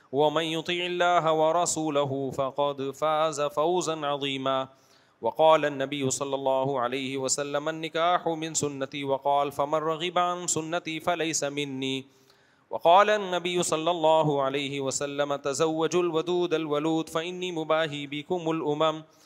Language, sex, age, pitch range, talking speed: Urdu, male, 30-49, 120-155 Hz, 115 wpm